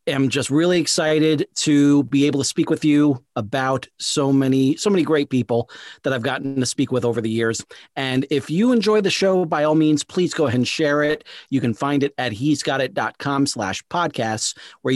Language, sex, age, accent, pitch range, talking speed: English, male, 40-59, American, 130-155 Hz, 210 wpm